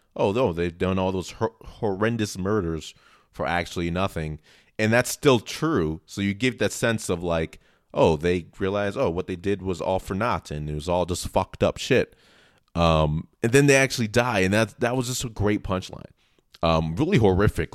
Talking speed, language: 200 wpm, English